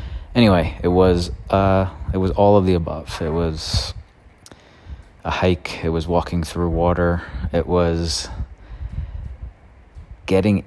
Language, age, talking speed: English, 30-49, 125 wpm